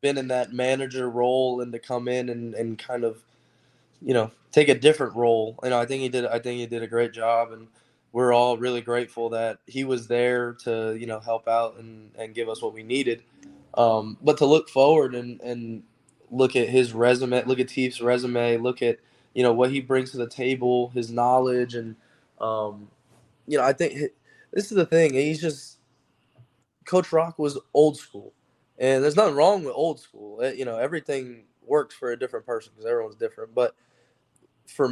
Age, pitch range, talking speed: 10-29, 115-135 Hz, 205 wpm